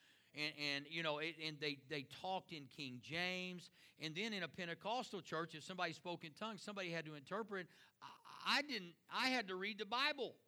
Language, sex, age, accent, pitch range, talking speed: English, male, 50-69, American, 170-230 Hz, 205 wpm